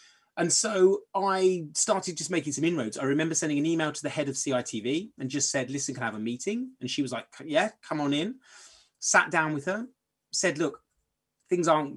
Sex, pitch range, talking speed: male, 130-180 Hz, 215 wpm